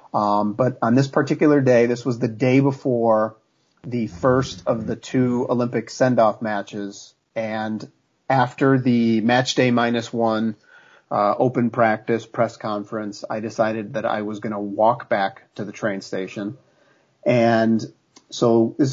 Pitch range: 110-130 Hz